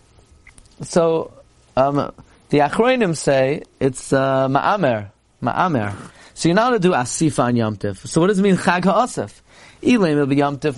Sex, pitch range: male, 135-195 Hz